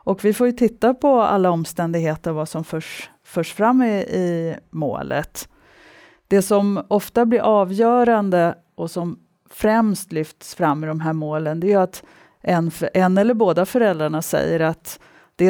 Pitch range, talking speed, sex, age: 165-205 Hz, 165 wpm, female, 40-59